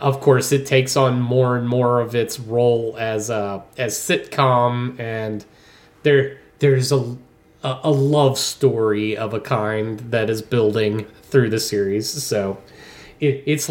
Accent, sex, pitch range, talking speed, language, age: American, male, 115-140 Hz, 155 wpm, English, 30-49